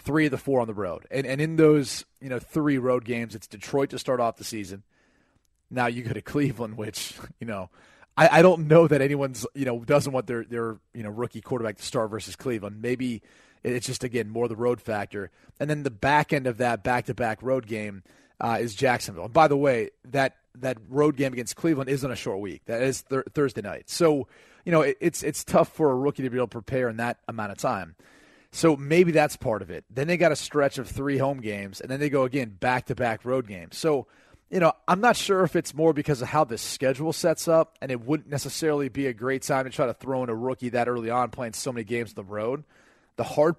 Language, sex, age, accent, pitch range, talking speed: English, male, 30-49, American, 120-150 Hz, 245 wpm